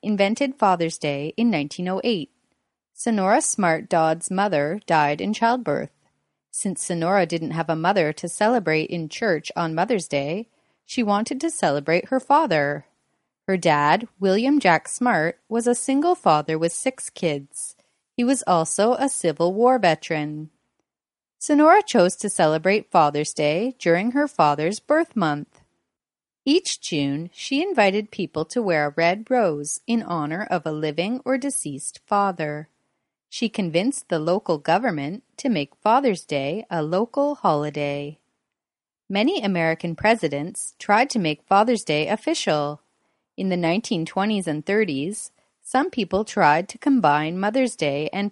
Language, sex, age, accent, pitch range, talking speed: English, female, 30-49, American, 155-235 Hz, 140 wpm